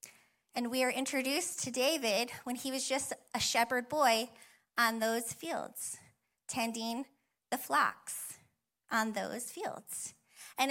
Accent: American